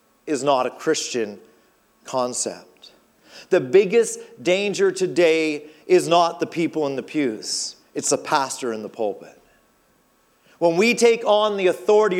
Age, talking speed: 40-59, 140 wpm